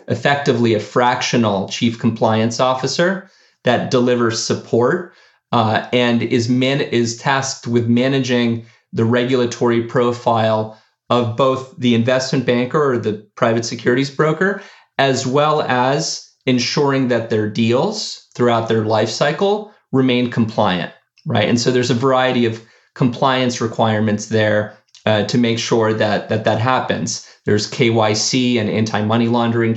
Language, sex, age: English, male, 30-49